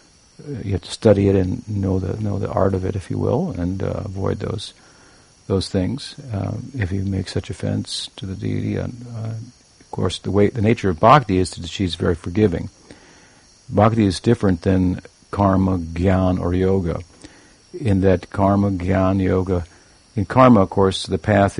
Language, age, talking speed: English, 50-69, 180 wpm